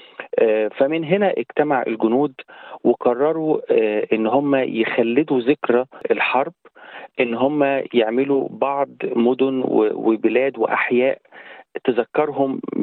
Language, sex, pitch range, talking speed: Arabic, male, 115-165 Hz, 85 wpm